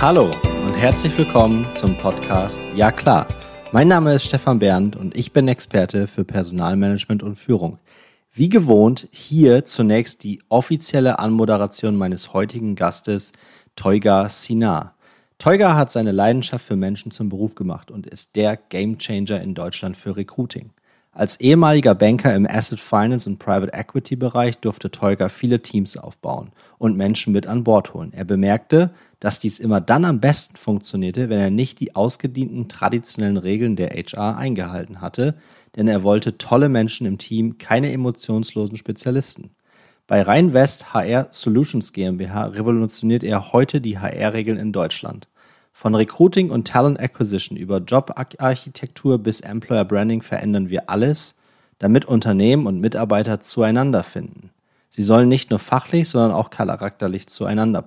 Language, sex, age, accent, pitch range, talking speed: German, male, 30-49, German, 105-125 Hz, 145 wpm